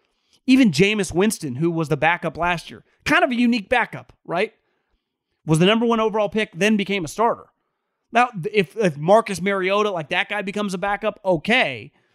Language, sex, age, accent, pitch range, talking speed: English, male, 30-49, American, 175-225 Hz, 185 wpm